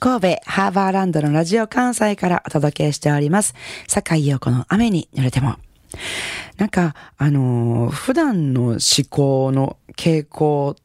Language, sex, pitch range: Japanese, female, 130-175 Hz